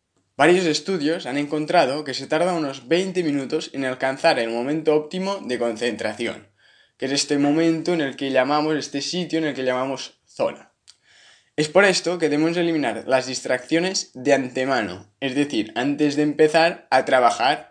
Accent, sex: Spanish, male